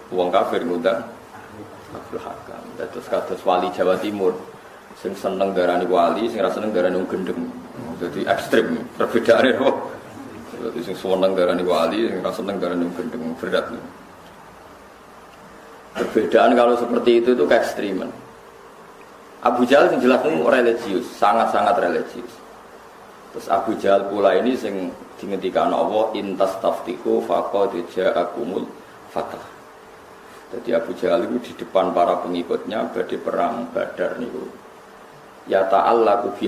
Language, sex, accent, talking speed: Indonesian, male, native, 125 wpm